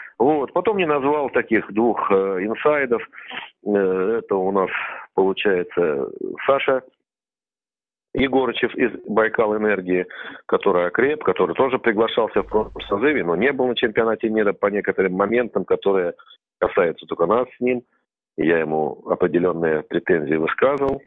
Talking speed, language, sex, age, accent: 130 wpm, Russian, male, 40-59, native